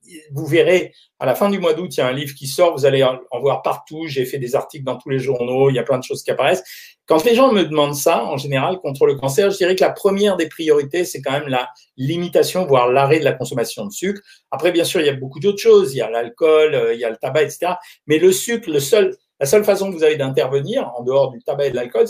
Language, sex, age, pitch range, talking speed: French, male, 50-69, 135-210 Hz, 280 wpm